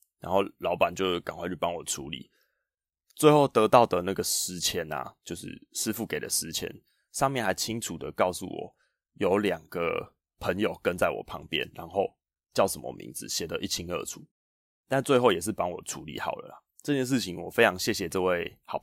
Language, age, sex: Chinese, 20-39, male